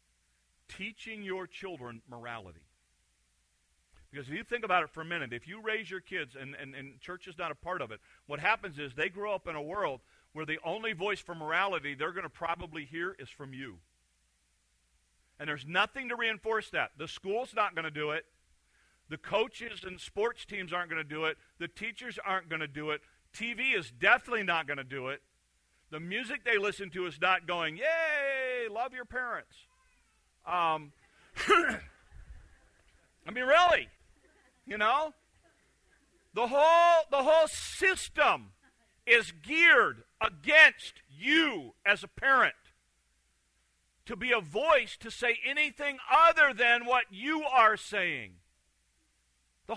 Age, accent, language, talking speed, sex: 50-69, American, English, 160 wpm, male